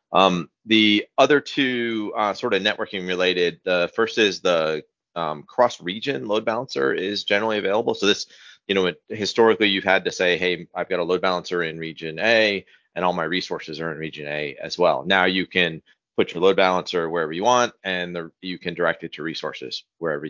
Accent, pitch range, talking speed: American, 85-110 Hz, 195 wpm